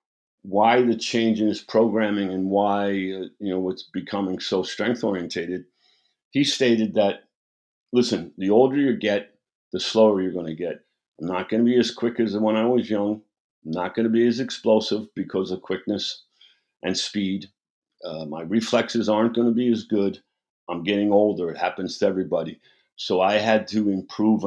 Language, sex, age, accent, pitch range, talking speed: English, male, 50-69, American, 95-120 Hz, 180 wpm